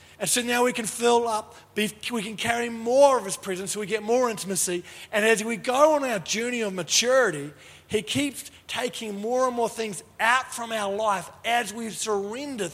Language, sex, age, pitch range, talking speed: English, male, 40-59, 185-230 Hz, 200 wpm